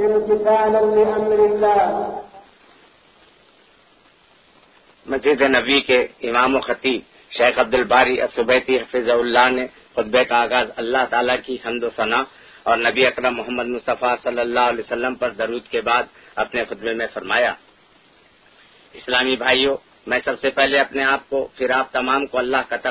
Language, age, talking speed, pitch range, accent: Telugu, 50-69, 40 wpm, 120-145 Hz, native